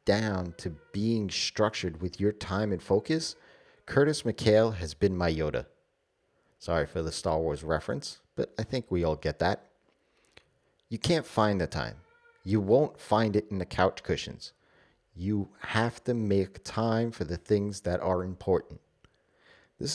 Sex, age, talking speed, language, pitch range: male, 30-49, 160 wpm, English, 90-115 Hz